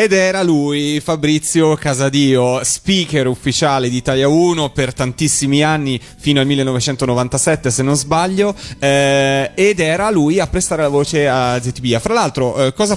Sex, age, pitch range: male, 30-49, 120-155 Hz